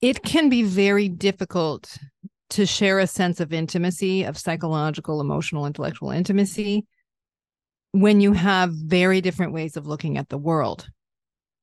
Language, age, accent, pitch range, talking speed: English, 40-59, American, 165-195 Hz, 140 wpm